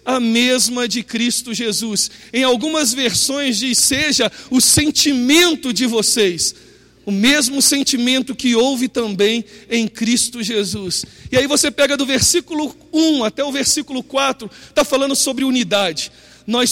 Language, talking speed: Portuguese, 140 wpm